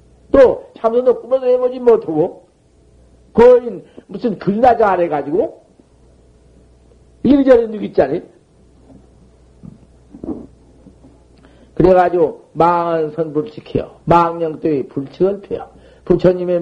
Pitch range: 155-195 Hz